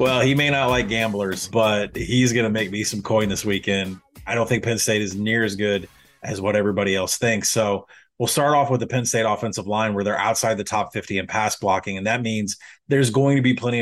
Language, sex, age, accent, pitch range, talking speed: English, male, 30-49, American, 105-130 Hz, 250 wpm